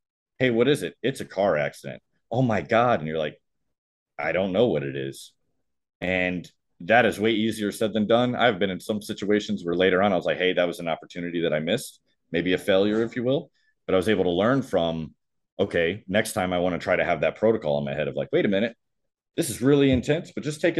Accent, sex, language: American, male, English